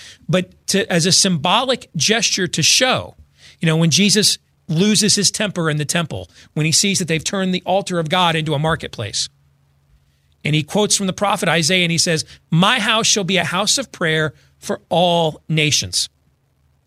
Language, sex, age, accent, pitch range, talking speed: English, male, 40-59, American, 125-190 Hz, 180 wpm